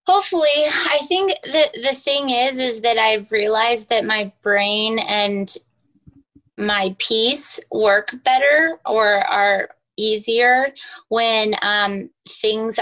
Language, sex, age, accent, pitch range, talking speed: English, female, 20-39, American, 205-245 Hz, 115 wpm